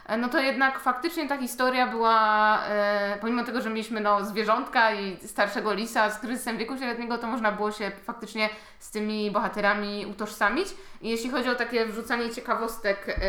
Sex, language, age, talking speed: female, Polish, 20-39, 165 wpm